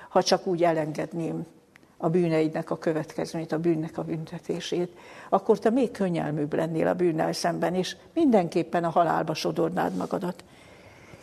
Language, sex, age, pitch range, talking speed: Hungarian, female, 60-79, 165-195 Hz, 140 wpm